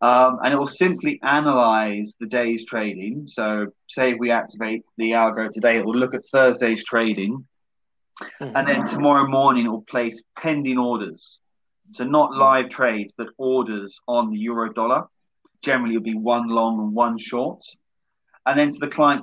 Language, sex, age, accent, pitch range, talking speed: English, male, 30-49, British, 115-135 Hz, 170 wpm